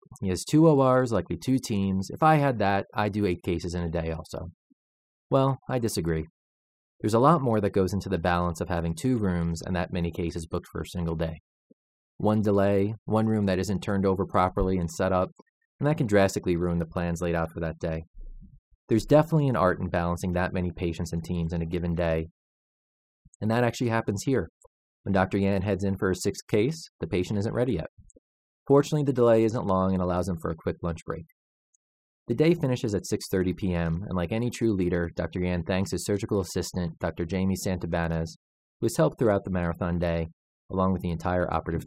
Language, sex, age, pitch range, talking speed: English, male, 30-49, 85-105 Hz, 210 wpm